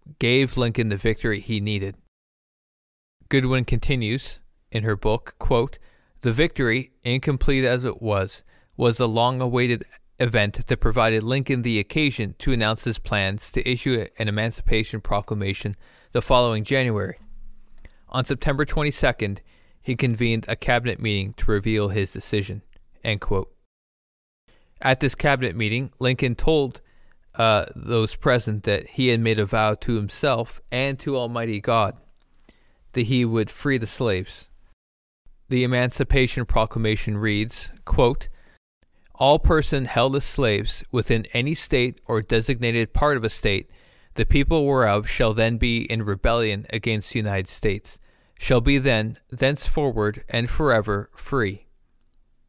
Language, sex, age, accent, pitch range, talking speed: English, male, 20-39, American, 105-130 Hz, 130 wpm